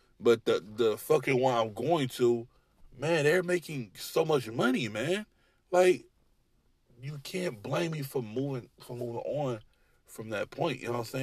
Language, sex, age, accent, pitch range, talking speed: English, male, 20-39, American, 120-175 Hz, 170 wpm